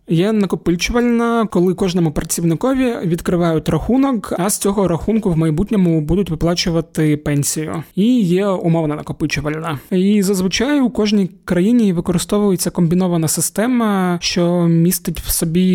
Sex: male